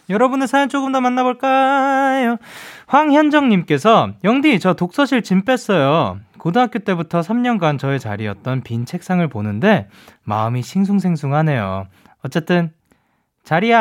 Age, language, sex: 20-39, Korean, male